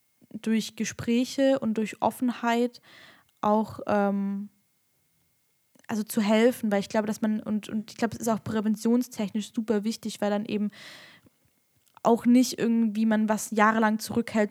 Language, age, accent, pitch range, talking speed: German, 10-29, German, 200-220 Hz, 145 wpm